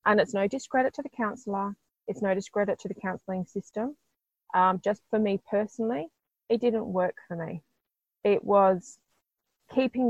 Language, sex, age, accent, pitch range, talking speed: English, female, 20-39, Australian, 185-235 Hz, 160 wpm